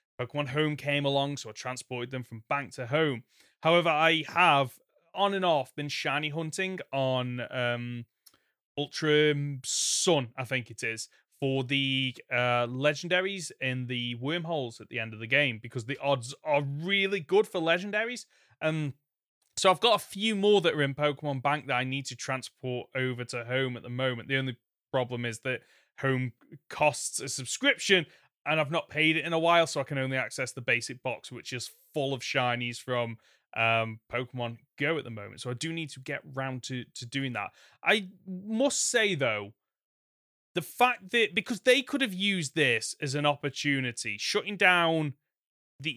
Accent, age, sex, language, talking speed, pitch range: British, 20-39, male, English, 185 wpm, 125-165 Hz